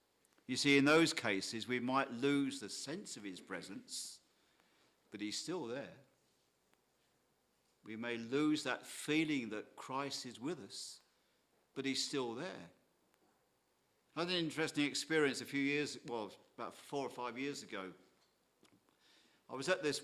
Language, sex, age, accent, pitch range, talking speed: English, male, 50-69, British, 115-150 Hz, 150 wpm